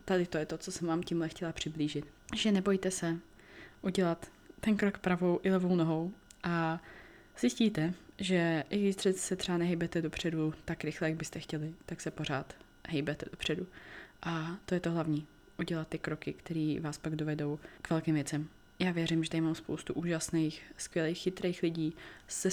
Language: Czech